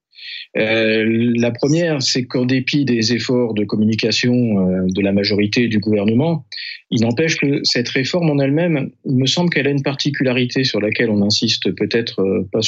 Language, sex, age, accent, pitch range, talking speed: French, male, 40-59, French, 115-150 Hz, 170 wpm